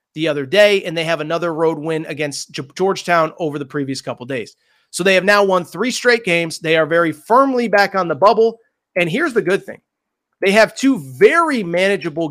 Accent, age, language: American, 30-49, English